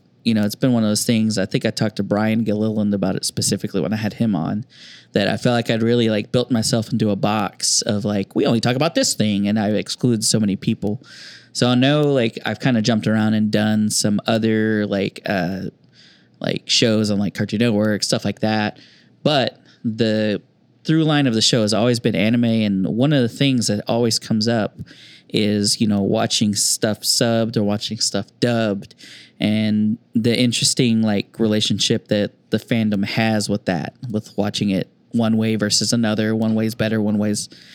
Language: English